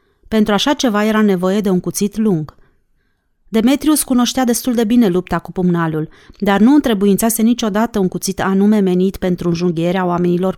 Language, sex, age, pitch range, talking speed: Romanian, female, 30-49, 180-225 Hz, 160 wpm